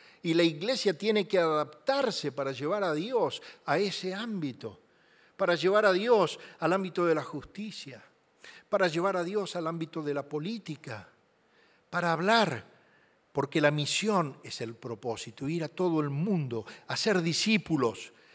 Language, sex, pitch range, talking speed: English, male, 130-185 Hz, 150 wpm